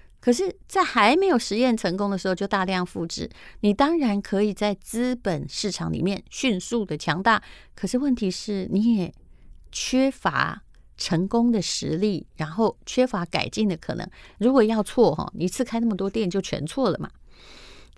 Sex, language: female, Chinese